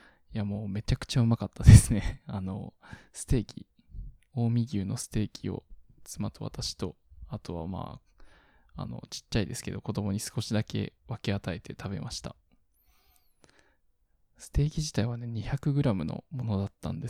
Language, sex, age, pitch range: Japanese, male, 20-39, 100-120 Hz